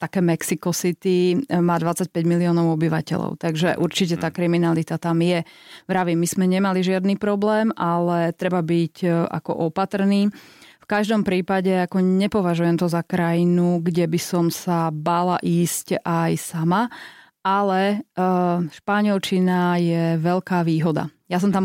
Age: 30-49